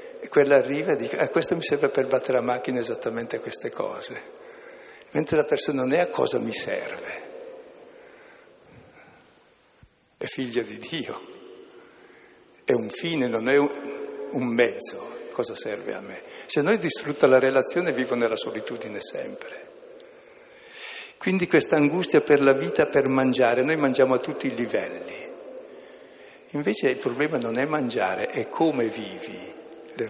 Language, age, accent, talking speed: Italian, 60-79, native, 150 wpm